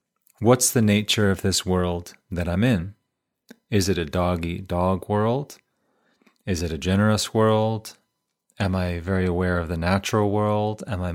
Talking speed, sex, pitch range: 160 wpm, male, 90-110 Hz